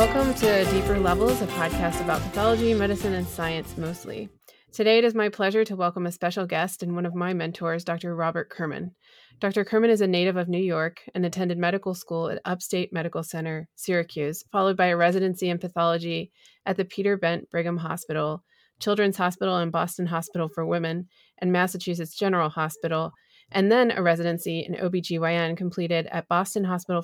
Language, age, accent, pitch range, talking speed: English, 30-49, American, 165-190 Hz, 180 wpm